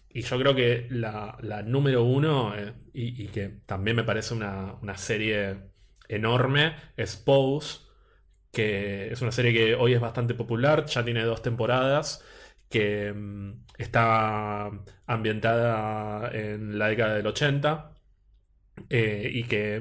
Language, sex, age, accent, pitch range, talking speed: Spanish, male, 20-39, Argentinian, 110-130 Hz, 135 wpm